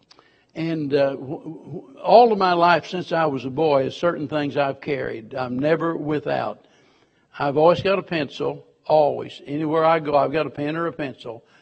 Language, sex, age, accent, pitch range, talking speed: English, male, 60-79, American, 150-185 Hz, 175 wpm